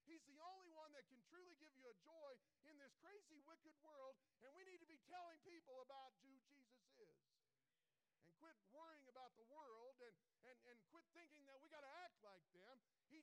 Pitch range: 155-235 Hz